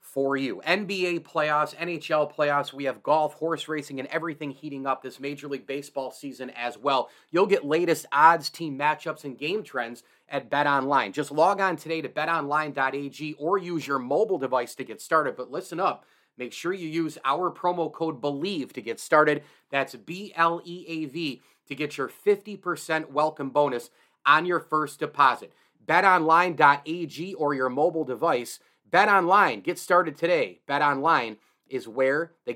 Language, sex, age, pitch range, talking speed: English, male, 30-49, 135-170 Hz, 165 wpm